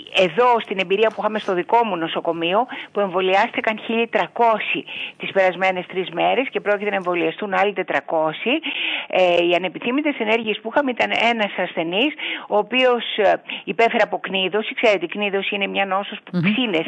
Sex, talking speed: female, 155 wpm